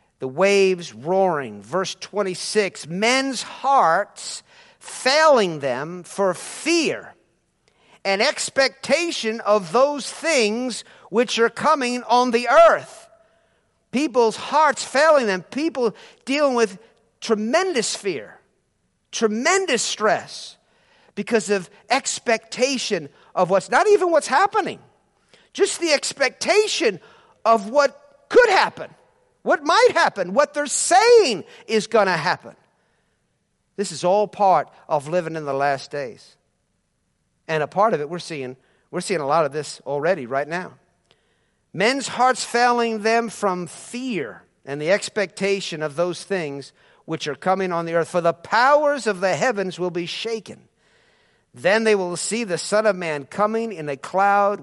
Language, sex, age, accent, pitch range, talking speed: English, male, 50-69, American, 185-290 Hz, 135 wpm